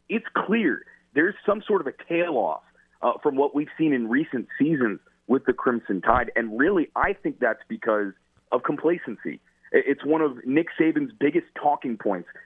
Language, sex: English, male